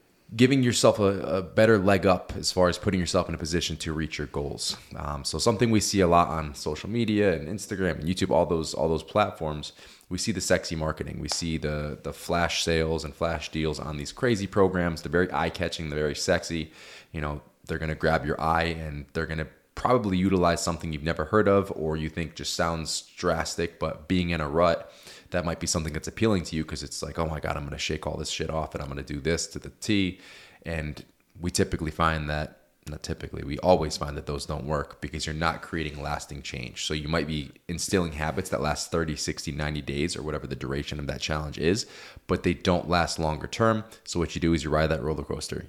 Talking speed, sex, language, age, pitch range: 235 wpm, male, English, 20-39, 75-90 Hz